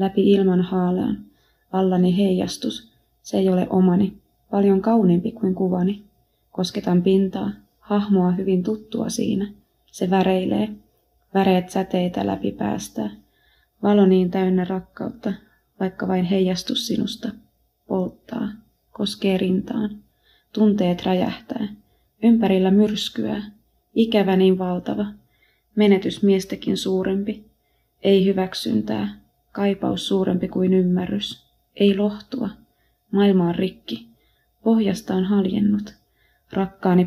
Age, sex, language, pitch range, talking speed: 20-39, female, Finnish, 185-210 Hz, 100 wpm